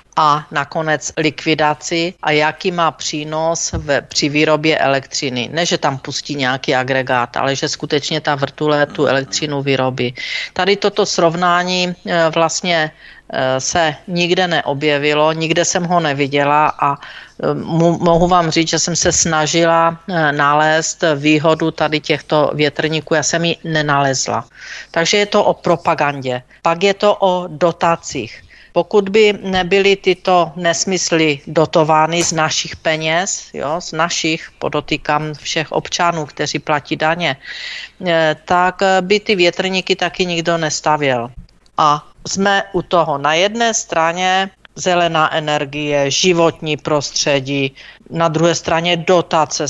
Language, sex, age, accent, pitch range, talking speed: Czech, female, 50-69, native, 150-175 Hz, 120 wpm